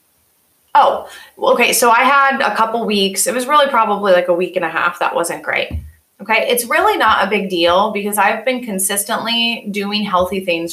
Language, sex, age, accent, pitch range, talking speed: English, female, 20-39, American, 180-220 Hz, 195 wpm